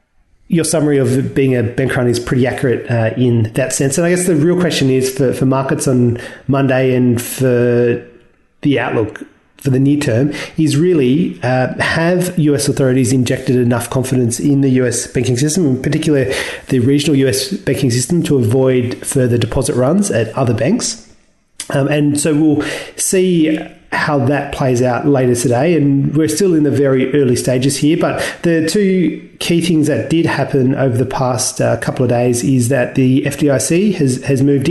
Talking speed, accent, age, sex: 180 wpm, Australian, 30-49, male